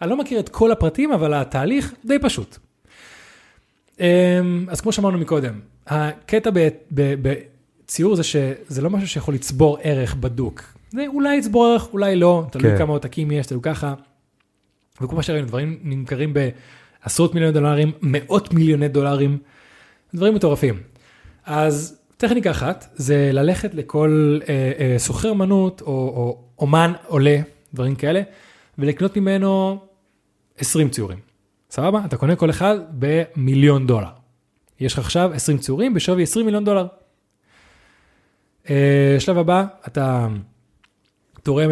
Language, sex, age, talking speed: Hebrew, male, 20-39, 125 wpm